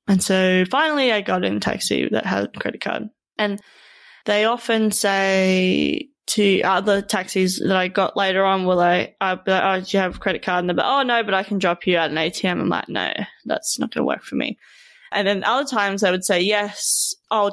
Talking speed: 240 wpm